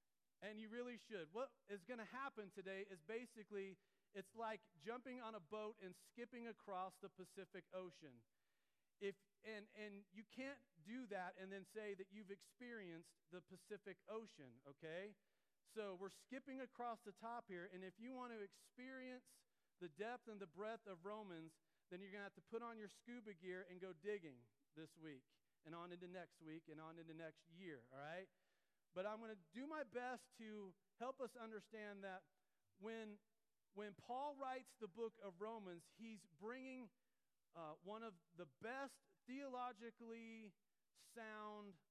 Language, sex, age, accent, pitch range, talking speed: English, male, 40-59, American, 180-230 Hz, 170 wpm